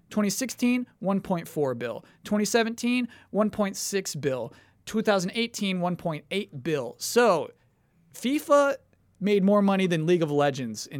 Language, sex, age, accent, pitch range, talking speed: English, male, 30-49, American, 150-205 Hz, 80 wpm